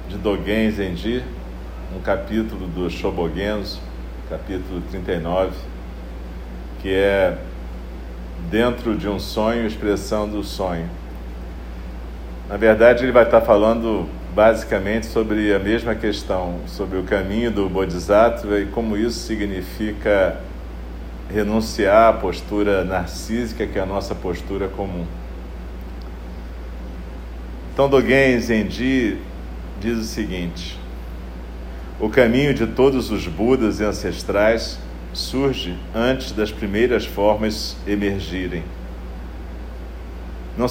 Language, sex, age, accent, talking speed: Portuguese, male, 40-59, Brazilian, 95 wpm